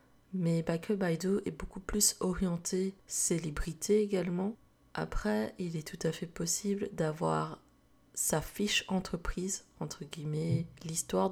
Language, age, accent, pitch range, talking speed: French, 20-39, French, 155-185 Hz, 120 wpm